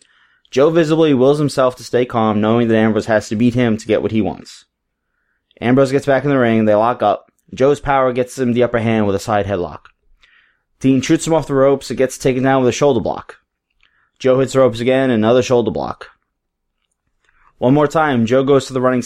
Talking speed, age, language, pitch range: 215 wpm, 20-39, English, 110-135 Hz